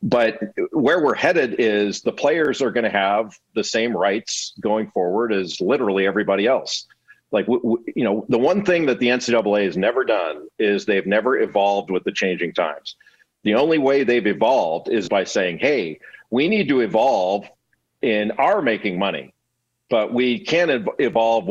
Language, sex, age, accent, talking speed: English, male, 50-69, American, 170 wpm